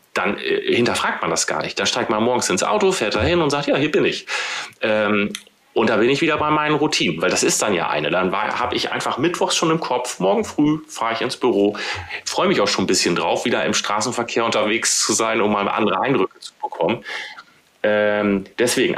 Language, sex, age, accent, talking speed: German, male, 30-49, German, 230 wpm